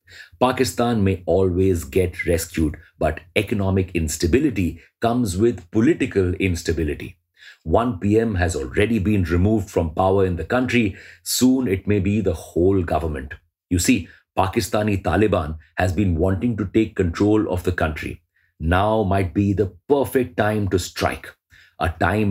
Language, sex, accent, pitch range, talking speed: English, male, Indian, 90-105 Hz, 140 wpm